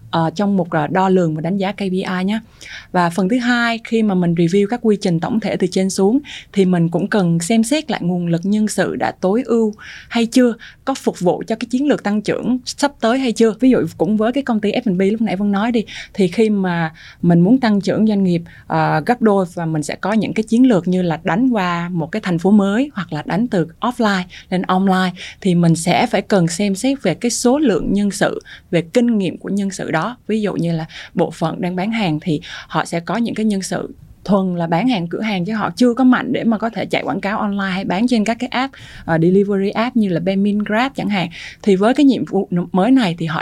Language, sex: Vietnamese, female